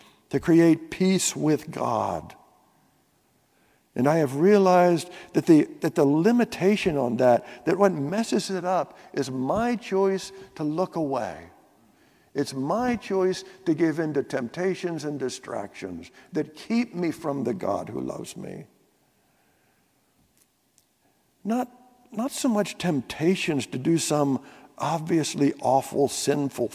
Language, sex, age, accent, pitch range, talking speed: English, male, 60-79, American, 125-185 Hz, 130 wpm